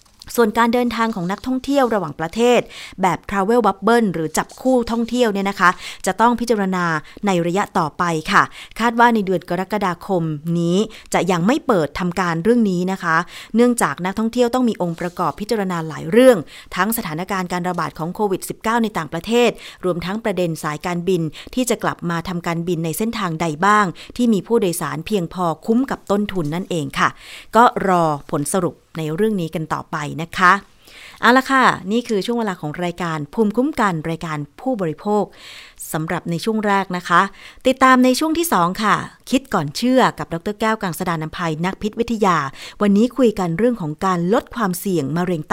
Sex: female